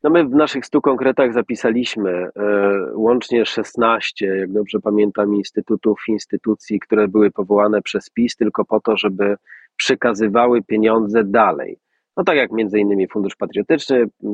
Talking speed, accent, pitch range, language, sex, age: 140 wpm, native, 105-130 Hz, Polish, male, 30-49